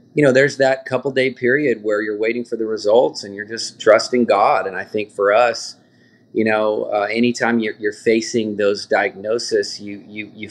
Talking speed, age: 200 wpm, 30-49